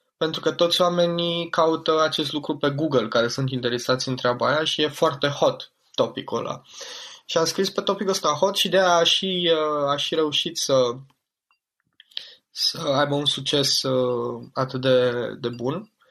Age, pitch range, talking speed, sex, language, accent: 20-39, 125-150 Hz, 165 wpm, male, Romanian, native